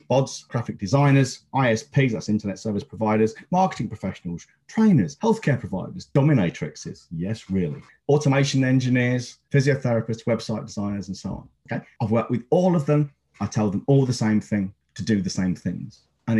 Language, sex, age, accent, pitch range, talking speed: English, male, 40-59, British, 105-145 Hz, 160 wpm